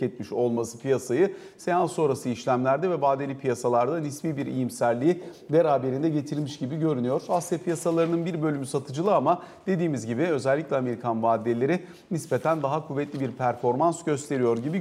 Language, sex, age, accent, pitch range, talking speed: Turkish, male, 40-59, native, 130-170 Hz, 140 wpm